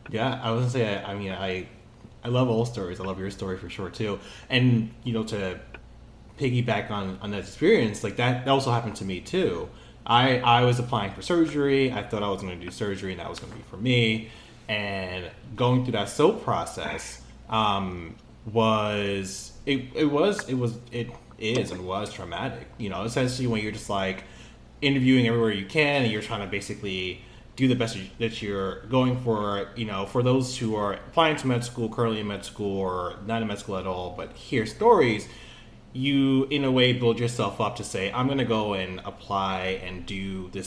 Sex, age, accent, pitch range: male, 20-39, American, 100-125 Hz